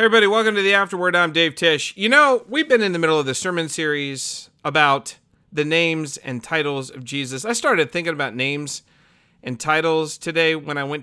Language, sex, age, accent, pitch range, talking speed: English, male, 40-59, American, 135-175 Hz, 200 wpm